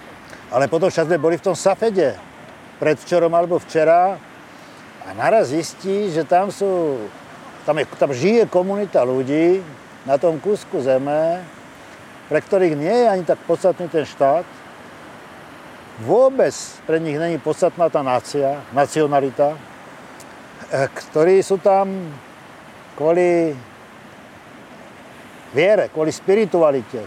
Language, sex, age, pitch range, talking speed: Slovak, male, 50-69, 155-190 Hz, 110 wpm